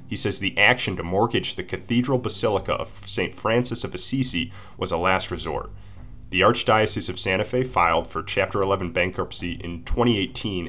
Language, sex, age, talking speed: English, male, 30-49, 170 wpm